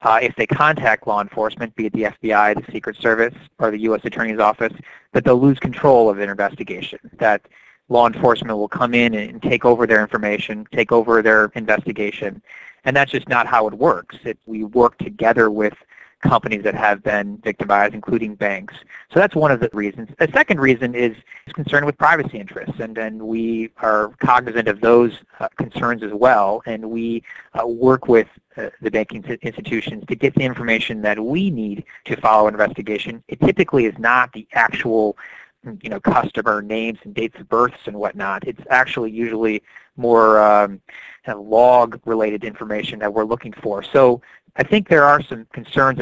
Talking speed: 185 wpm